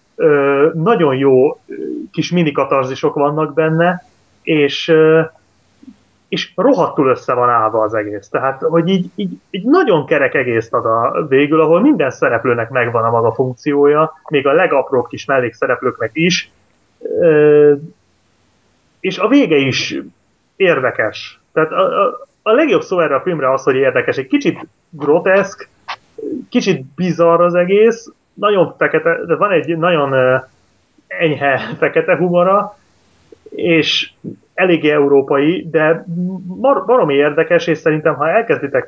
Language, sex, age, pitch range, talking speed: Hungarian, male, 30-49, 135-190 Hz, 125 wpm